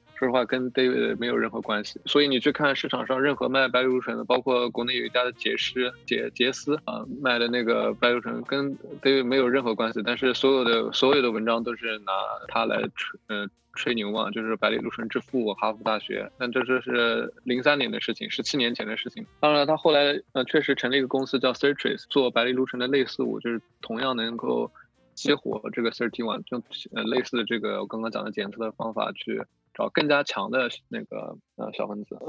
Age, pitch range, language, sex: 20-39, 110-135 Hz, English, male